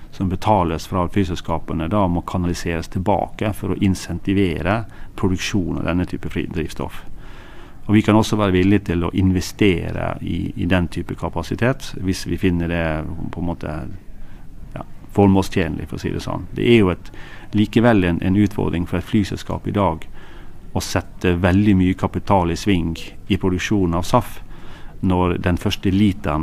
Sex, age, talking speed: male, 40-59, 160 wpm